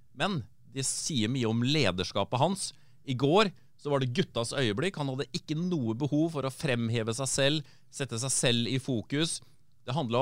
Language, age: English, 30-49